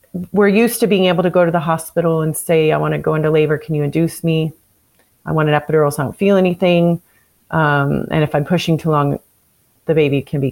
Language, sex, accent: English, female, American